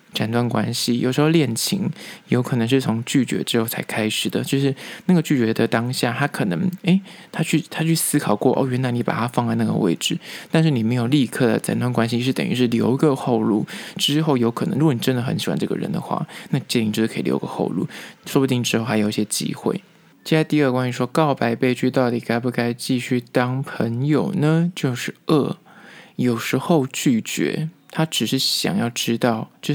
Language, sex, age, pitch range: Chinese, male, 20-39, 120-160 Hz